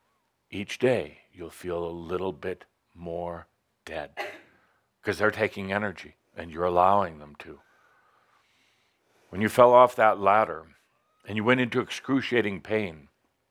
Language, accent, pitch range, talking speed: English, American, 90-115 Hz, 135 wpm